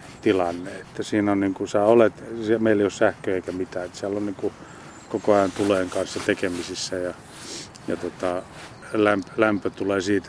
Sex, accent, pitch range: male, native, 95-115 Hz